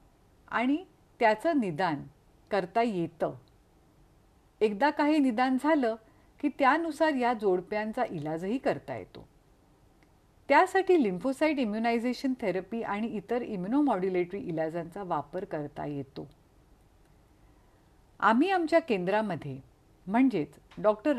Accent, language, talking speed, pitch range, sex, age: native, Marathi, 90 wpm, 170-255 Hz, female, 50-69